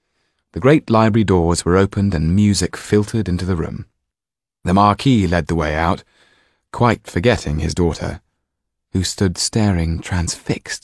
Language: Chinese